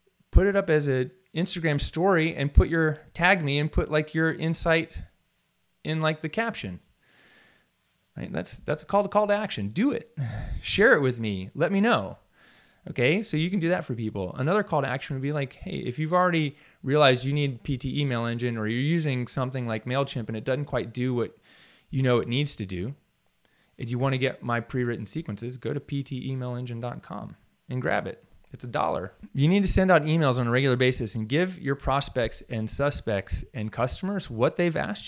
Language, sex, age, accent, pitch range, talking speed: English, male, 20-39, American, 115-155 Hz, 205 wpm